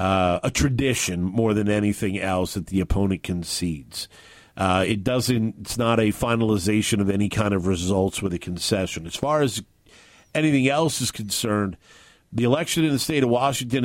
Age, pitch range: 50-69, 110-145 Hz